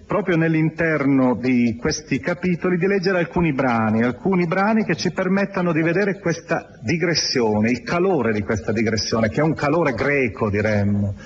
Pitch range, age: 110-170 Hz, 40-59